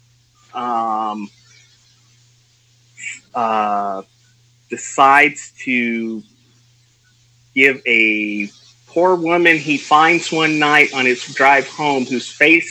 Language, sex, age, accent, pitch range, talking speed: English, male, 30-49, American, 115-140 Hz, 85 wpm